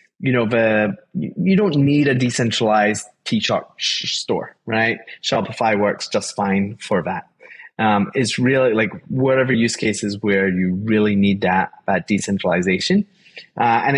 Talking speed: 145 wpm